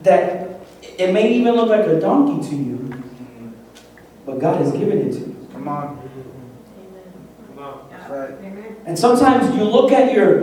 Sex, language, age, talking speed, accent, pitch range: male, English, 40-59, 175 wpm, American, 130-190 Hz